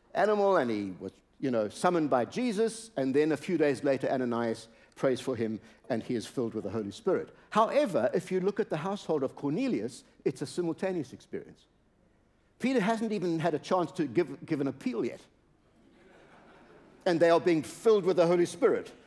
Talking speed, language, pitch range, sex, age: 190 wpm, English, 125-200 Hz, male, 60-79